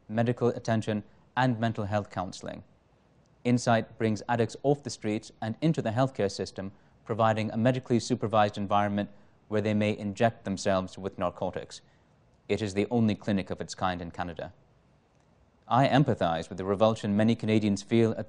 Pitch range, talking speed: 100-120 Hz, 160 wpm